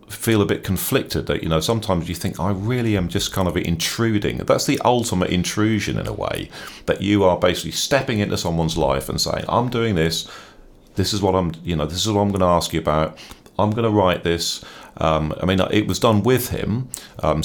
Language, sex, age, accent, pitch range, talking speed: English, male, 40-59, British, 80-105 Hz, 225 wpm